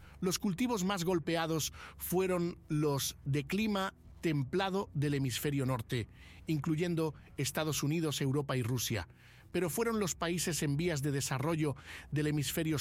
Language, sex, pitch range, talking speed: Spanish, male, 135-175 Hz, 130 wpm